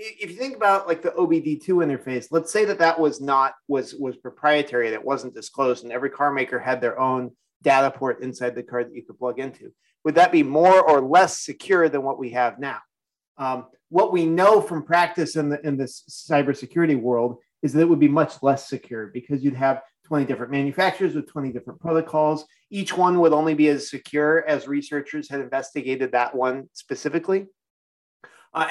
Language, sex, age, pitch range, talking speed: English, male, 30-49, 130-160 Hz, 195 wpm